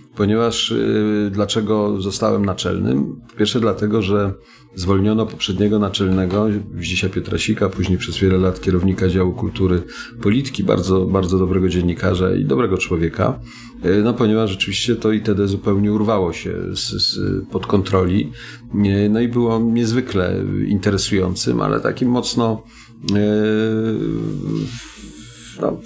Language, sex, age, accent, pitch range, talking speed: Polish, male, 40-59, native, 95-110 Hz, 115 wpm